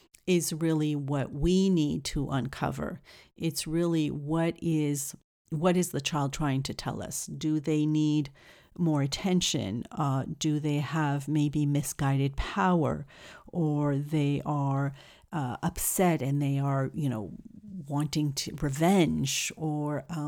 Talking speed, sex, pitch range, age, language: 135 wpm, female, 140-170 Hz, 50-69, English